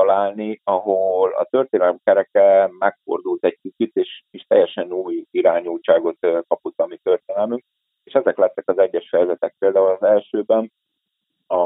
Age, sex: 30-49, male